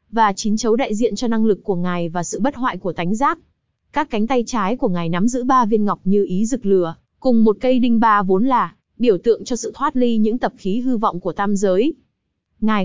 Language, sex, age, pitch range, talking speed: Vietnamese, female, 20-39, 200-245 Hz, 250 wpm